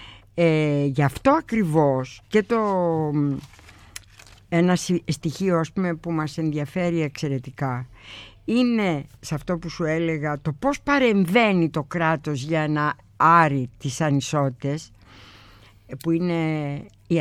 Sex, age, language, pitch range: female, 60-79, Greek, 140-190 Hz